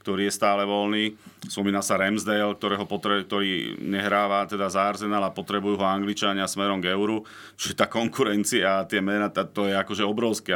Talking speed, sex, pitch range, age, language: 170 wpm, male, 100-115 Hz, 40-59, Slovak